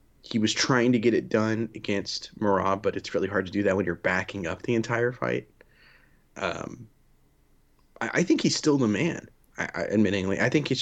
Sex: male